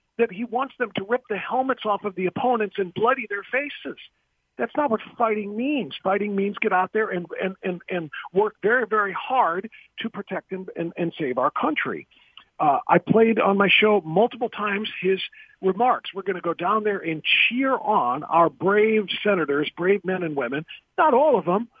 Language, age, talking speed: English, 50-69, 195 wpm